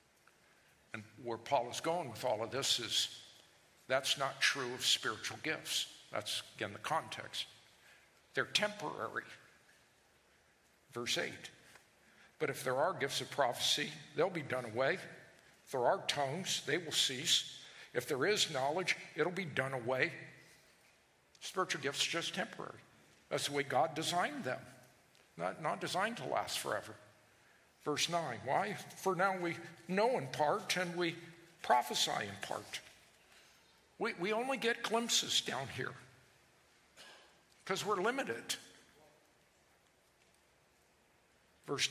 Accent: American